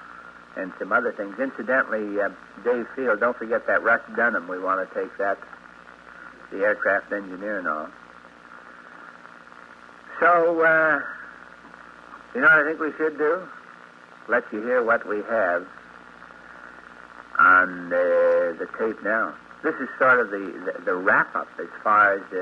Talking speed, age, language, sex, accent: 150 wpm, 60-79, English, male, American